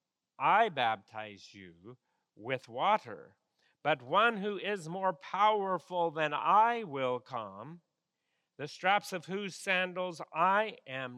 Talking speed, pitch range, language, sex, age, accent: 120 wpm, 125-180 Hz, English, male, 50-69, American